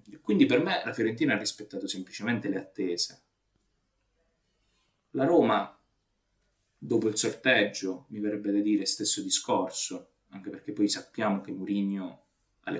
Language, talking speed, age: Italian, 130 wpm, 20-39